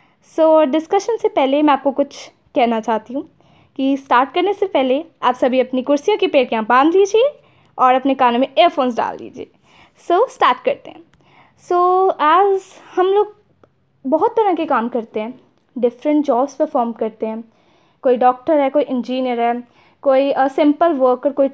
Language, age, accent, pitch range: Hindi, 20-39, native, 255-360 Hz